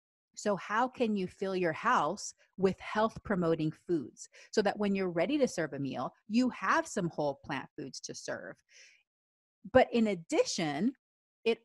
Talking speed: 165 wpm